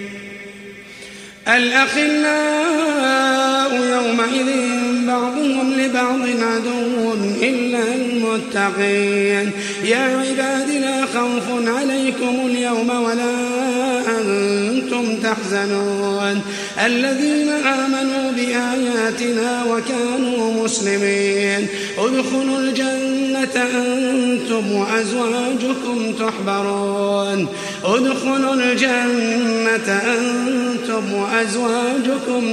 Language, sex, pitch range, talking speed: Arabic, male, 220-260 Hz, 55 wpm